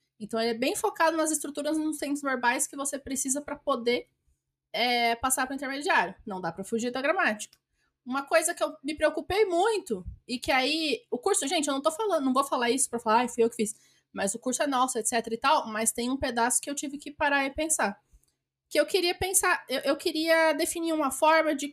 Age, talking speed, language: 20-39, 240 wpm, Portuguese